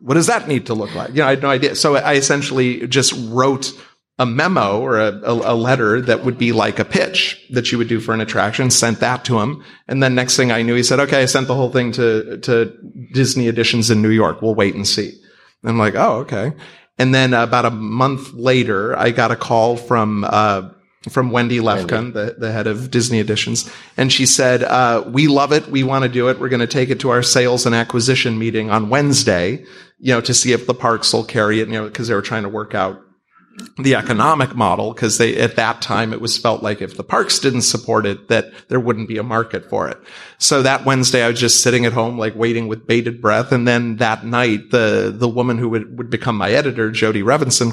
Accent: American